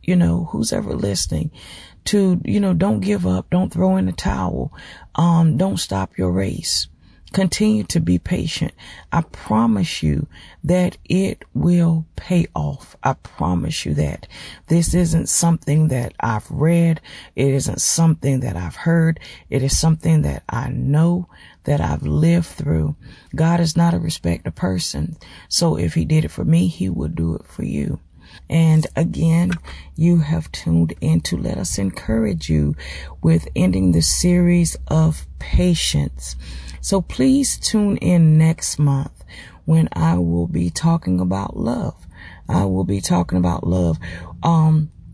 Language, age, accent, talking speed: English, 40-59, American, 155 wpm